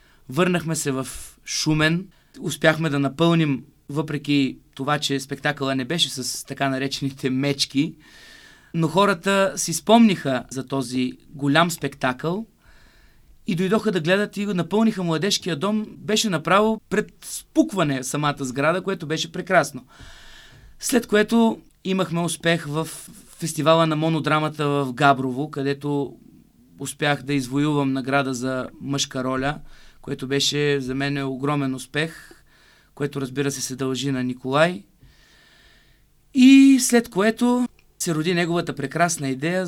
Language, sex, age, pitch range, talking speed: Bulgarian, male, 30-49, 140-175 Hz, 120 wpm